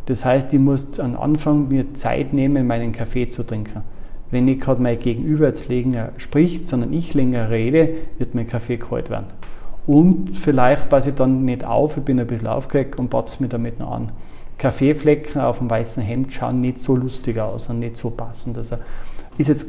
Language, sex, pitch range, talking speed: German, male, 120-140 Hz, 195 wpm